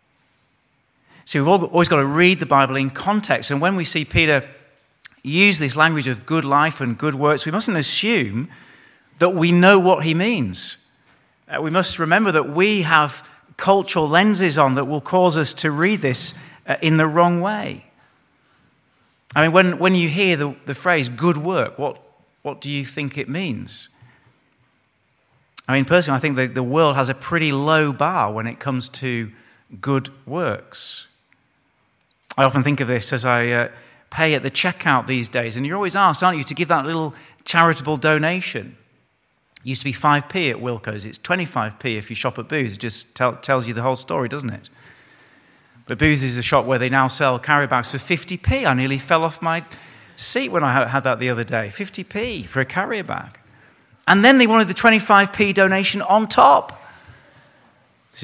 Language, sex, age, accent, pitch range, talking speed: English, male, 40-59, British, 130-175 Hz, 185 wpm